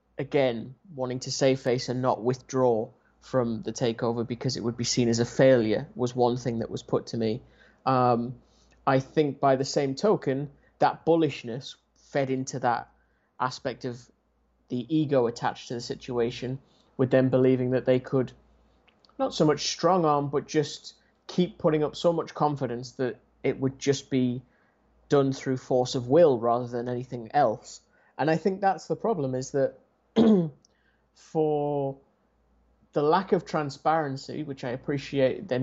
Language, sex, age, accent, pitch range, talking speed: English, male, 30-49, British, 125-150 Hz, 165 wpm